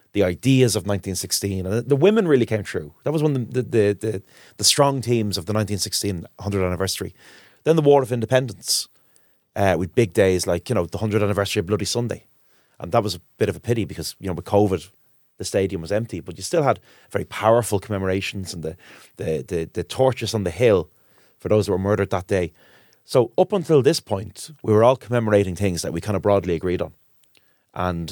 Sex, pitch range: male, 95-120 Hz